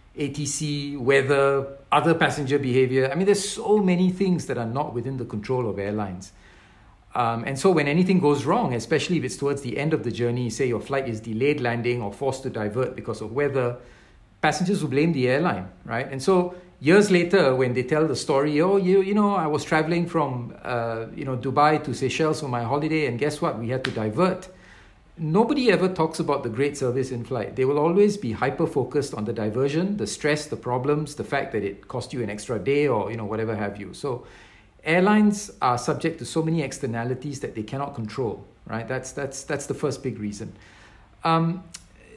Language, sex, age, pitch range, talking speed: English, male, 50-69, 115-165 Hz, 205 wpm